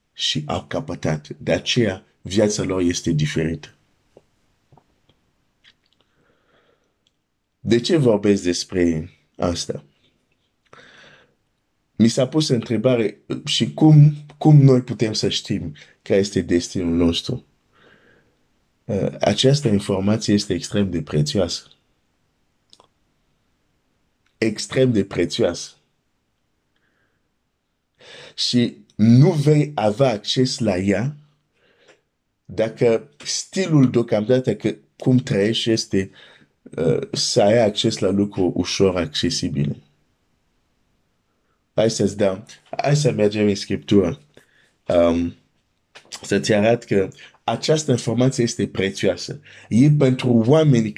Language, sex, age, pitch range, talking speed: Romanian, male, 50-69, 95-130 Hz, 90 wpm